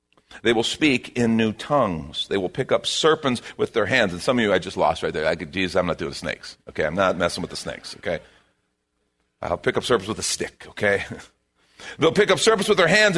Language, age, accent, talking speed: English, 40-59, American, 235 wpm